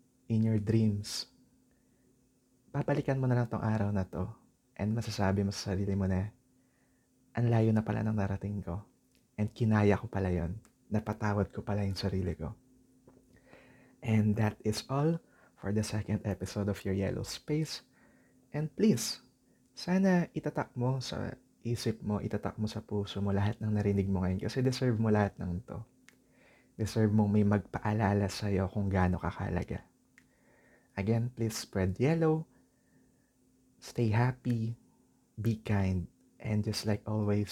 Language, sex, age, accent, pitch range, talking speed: English, male, 20-39, Filipino, 100-130 Hz, 145 wpm